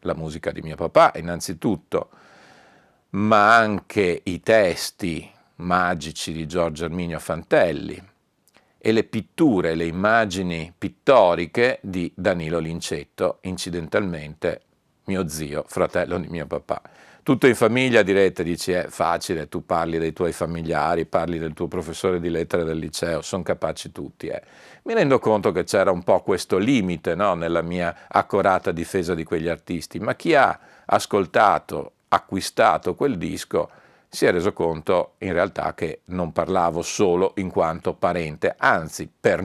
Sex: male